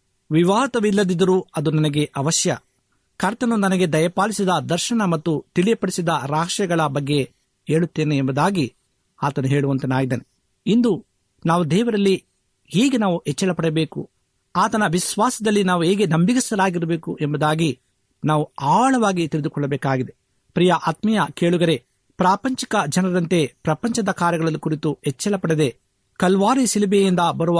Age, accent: 50-69, native